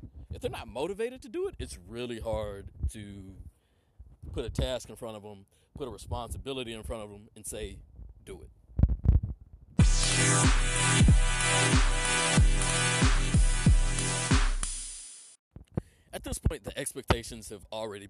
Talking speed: 120 wpm